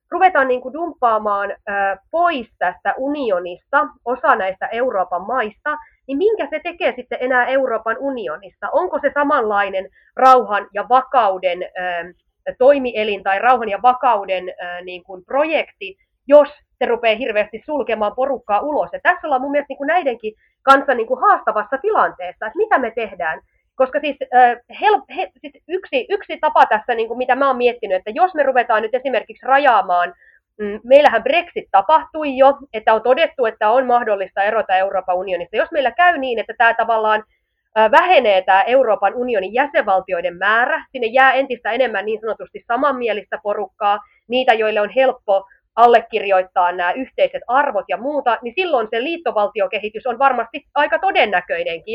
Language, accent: Finnish, native